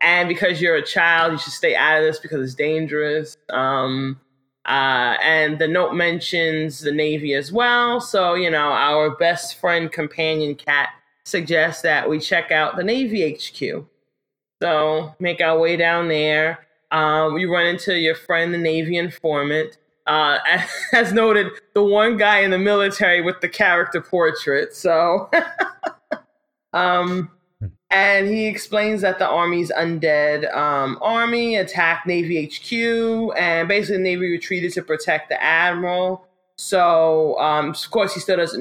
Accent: American